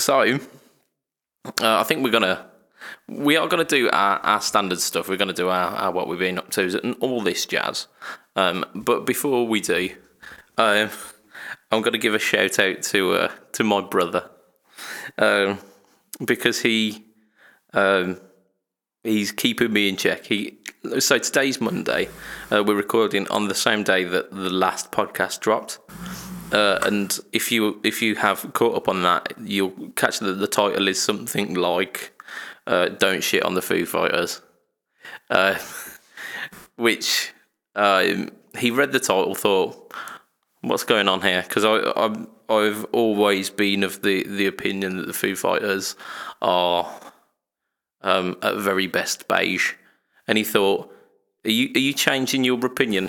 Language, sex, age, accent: English, male, 20-39, British